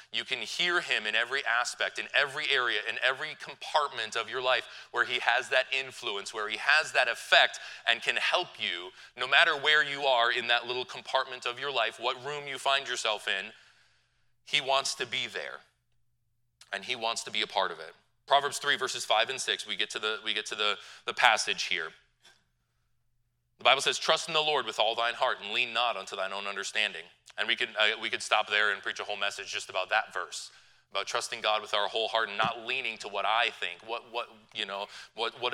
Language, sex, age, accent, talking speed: English, male, 30-49, American, 225 wpm